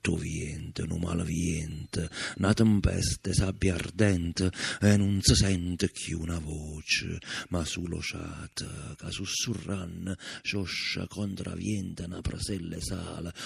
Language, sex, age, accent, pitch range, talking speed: Italian, male, 50-69, native, 80-95 Hz, 115 wpm